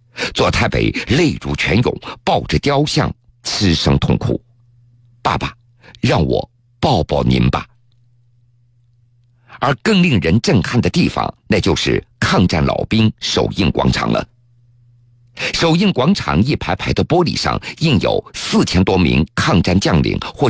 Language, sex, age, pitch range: Chinese, male, 50-69, 120-135 Hz